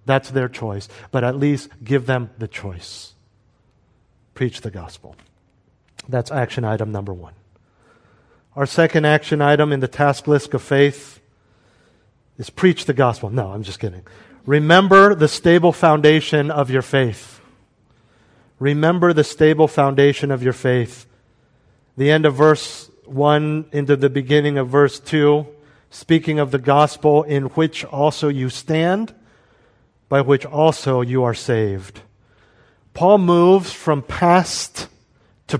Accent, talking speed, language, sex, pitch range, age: American, 135 wpm, English, male, 125-175 Hz, 50-69